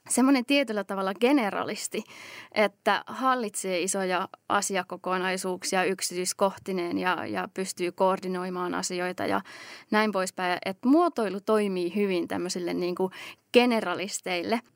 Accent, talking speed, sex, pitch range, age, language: native, 100 wpm, female, 180-215 Hz, 20-39, Finnish